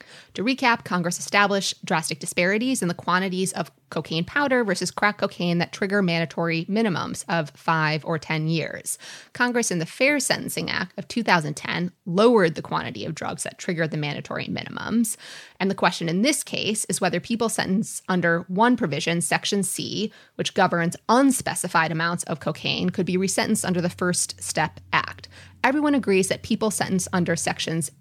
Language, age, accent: English, 20-39, American